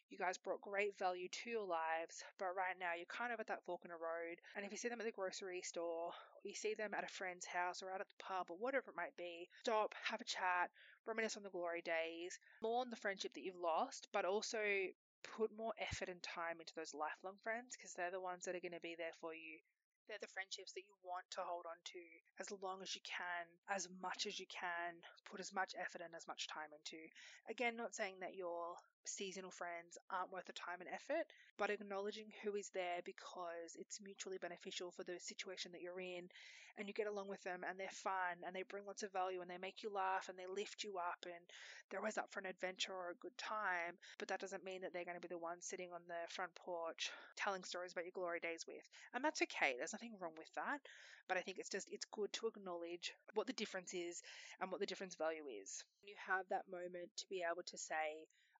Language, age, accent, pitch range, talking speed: English, 20-39, Australian, 175-205 Hz, 245 wpm